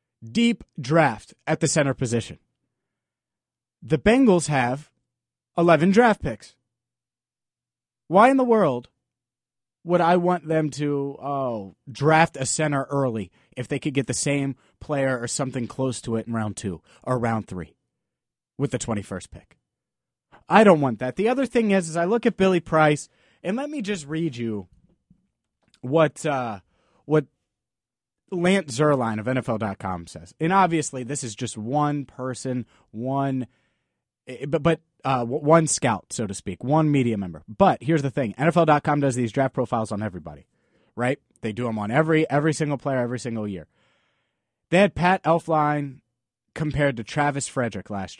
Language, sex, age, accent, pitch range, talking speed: English, male, 30-49, American, 115-155 Hz, 155 wpm